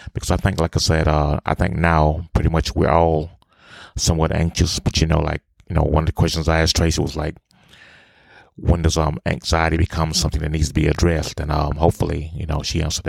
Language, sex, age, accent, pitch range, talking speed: English, male, 30-49, American, 80-90 Hz, 225 wpm